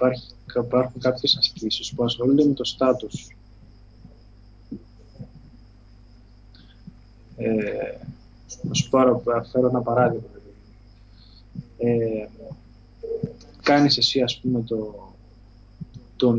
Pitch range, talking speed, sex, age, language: 110-145 Hz, 85 wpm, male, 20-39, Greek